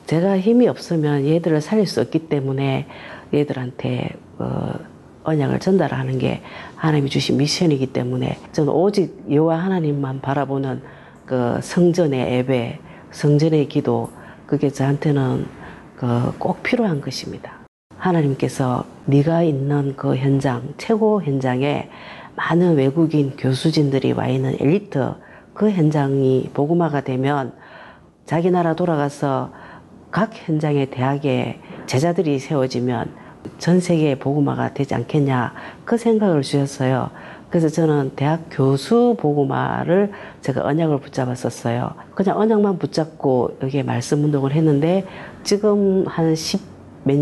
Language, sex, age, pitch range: Korean, female, 40-59, 135-170 Hz